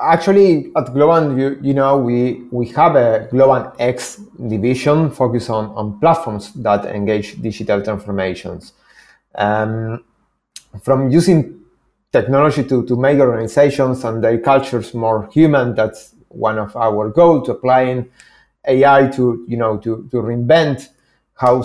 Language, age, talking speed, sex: English, 30-49, 135 wpm, male